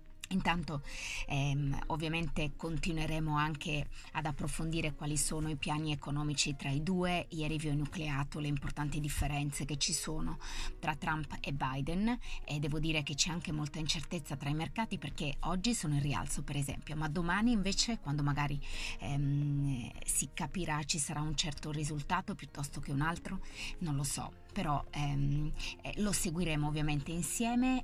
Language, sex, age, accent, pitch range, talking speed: Italian, female, 20-39, native, 145-165 Hz, 160 wpm